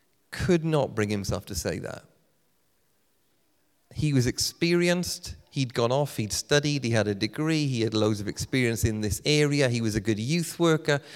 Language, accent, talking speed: English, British, 175 wpm